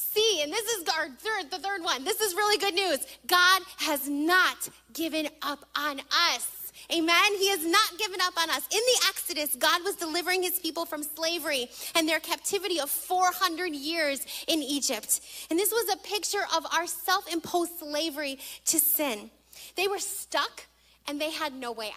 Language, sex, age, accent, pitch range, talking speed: English, female, 30-49, American, 285-365 Hz, 180 wpm